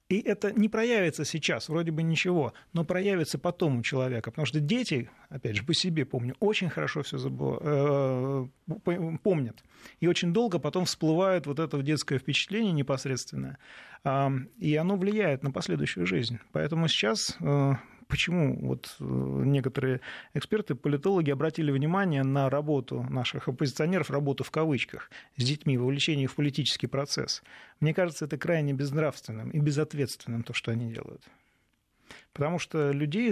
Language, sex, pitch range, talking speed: Russian, male, 135-170 Hz, 145 wpm